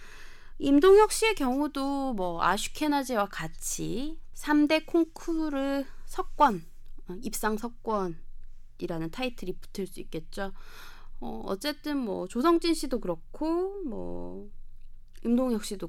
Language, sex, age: Korean, female, 20-39